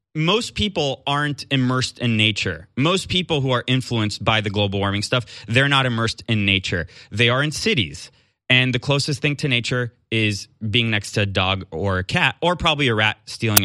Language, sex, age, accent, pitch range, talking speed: English, male, 20-39, American, 110-150 Hz, 200 wpm